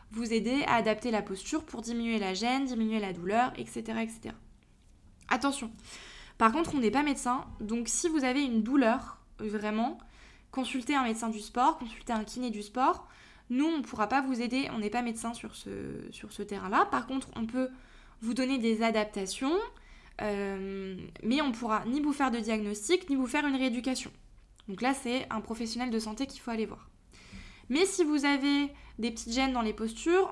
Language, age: French, 20-39